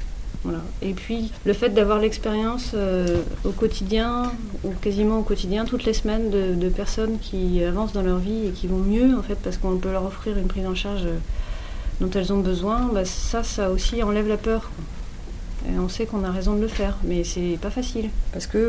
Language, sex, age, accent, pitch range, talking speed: French, female, 30-49, French, 180-220 Hz, 210 wpm